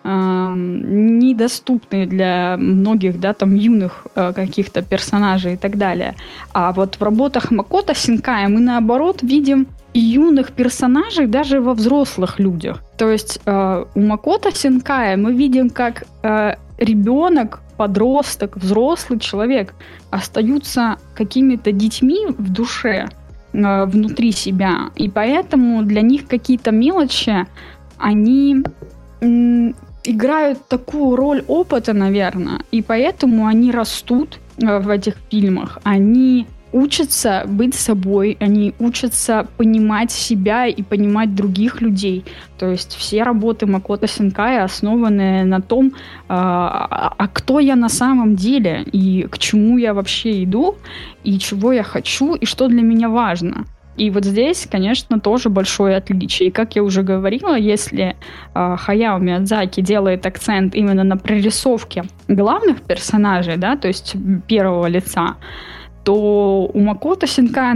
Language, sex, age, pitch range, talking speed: Russian, female, 20-39, 195-250 Hz, 125 wpm